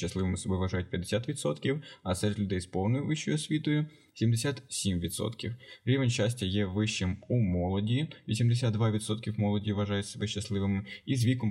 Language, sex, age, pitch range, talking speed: Ukrainian, male, 20-39, 100-115 Hz, 145 wpm